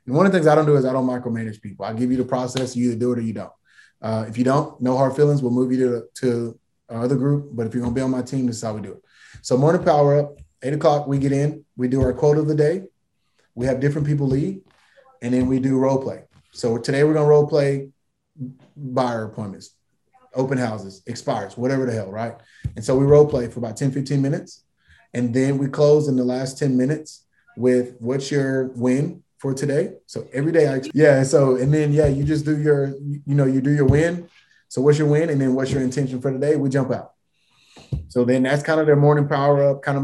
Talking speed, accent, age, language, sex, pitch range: 250 wpm, American, 30-49, English, male, 125-145 Hz